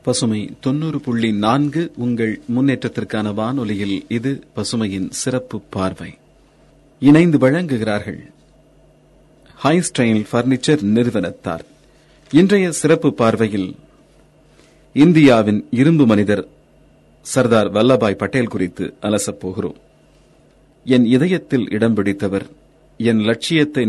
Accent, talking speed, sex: native, 75 wpm, male